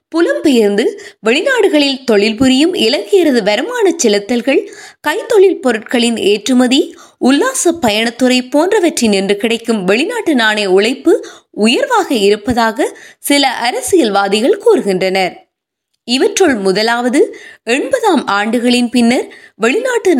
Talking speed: 85 wpm